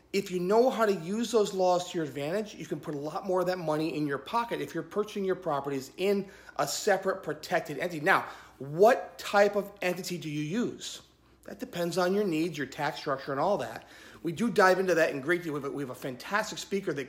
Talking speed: 240 wpm